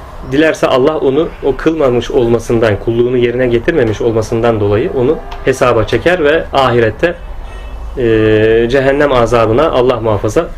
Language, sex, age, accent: Turkish, male, 30-49, native